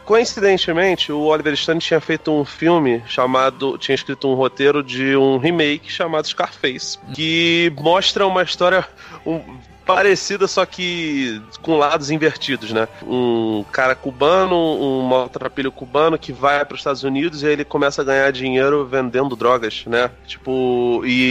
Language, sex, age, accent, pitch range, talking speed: Portuguese, male, 30-49, Brazilian, 125-165 Hz, 150 wpm